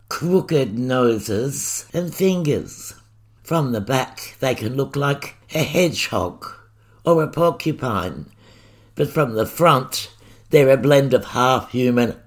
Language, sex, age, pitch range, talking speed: English, male, 60-79, 110-135 Hz, 120 wpm